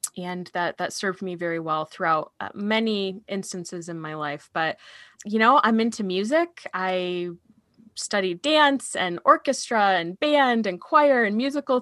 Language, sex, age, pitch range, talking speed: English, female, 20-39, 175-225 Hz, 155 wpm